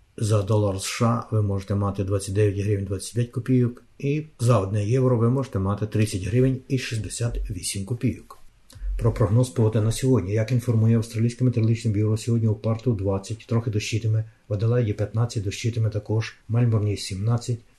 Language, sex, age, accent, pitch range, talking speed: Ukrainian, male, 50-69, native, 105-125 Hz, 155 wpm